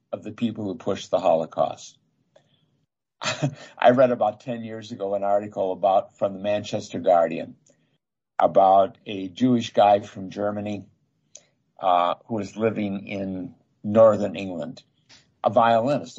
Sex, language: male, English